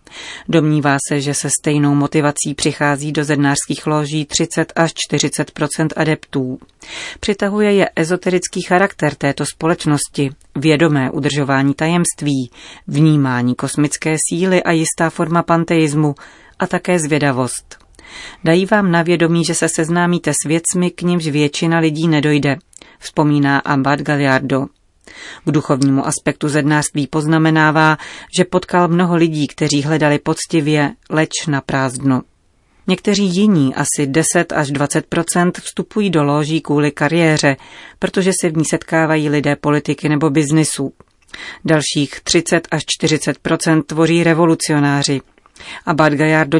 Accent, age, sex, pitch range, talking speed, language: native, 30-49, female, 145-170 Hz, 120 wpm, Czech